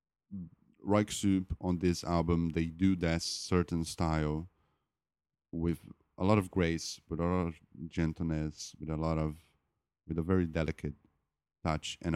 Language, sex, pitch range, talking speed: English, male, 80-105 Hz, 145 wpm